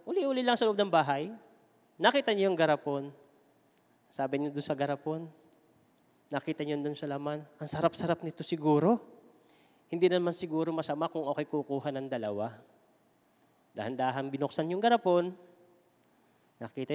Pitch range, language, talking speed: 140-185 Hz, English, 135 wpm